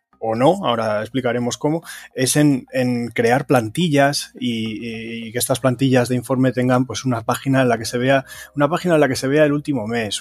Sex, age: male, 20-39